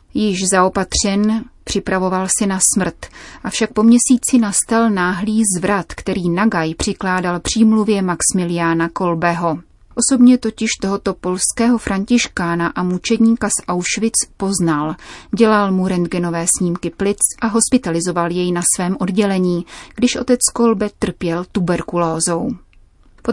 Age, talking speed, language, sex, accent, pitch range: 30-49, 115 wpm, Czech, female, native, 180-215 Hz